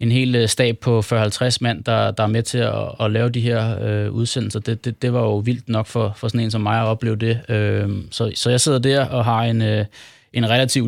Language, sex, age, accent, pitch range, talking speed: Danish, male, 20-39, native, 110-120 Hz, 255 wpm